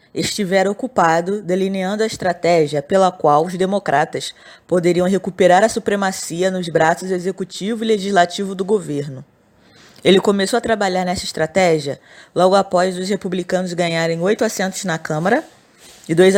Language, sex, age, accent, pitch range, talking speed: Portuguese, female, 20-39, Brazilian, 170-200 Hz, 135 wpm